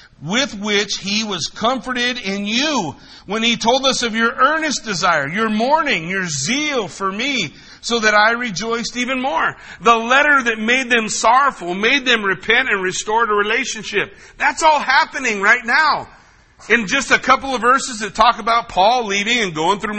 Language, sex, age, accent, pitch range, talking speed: English, male, 50-69, American, 205-245 Hz, 175 wpm